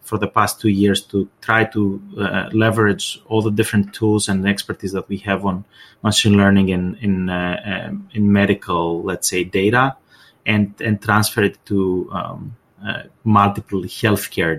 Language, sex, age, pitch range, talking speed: English, male, 30-49, 95-110 Hz, 165 wpm